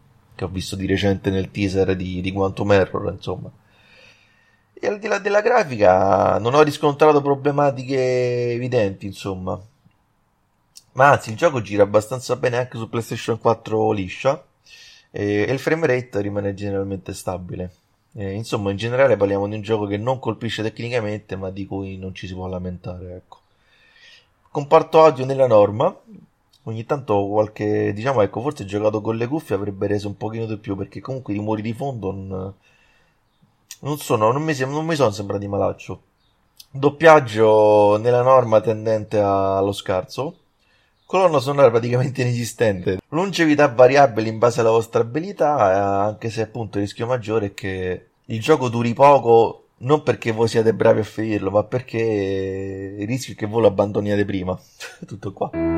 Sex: male